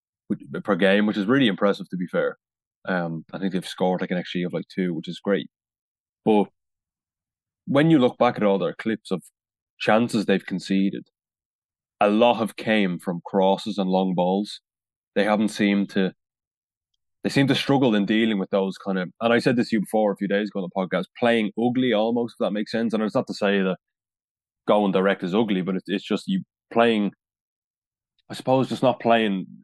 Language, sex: English, male